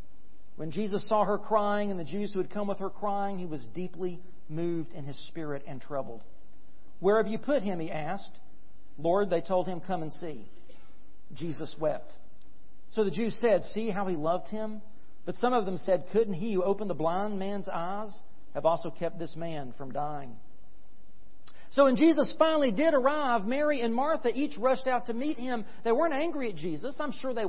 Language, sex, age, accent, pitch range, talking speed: English, male, 40-59, American, 185-265 Hz, 200 wpm